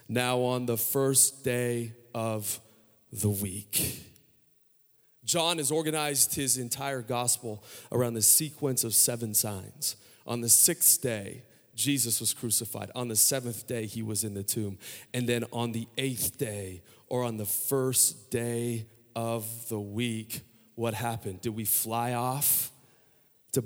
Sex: male